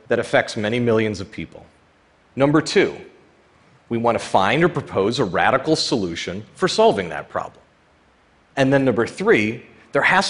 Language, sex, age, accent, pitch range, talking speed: Russian, male, 40-59, American, 105-170 Hz, 155 wpm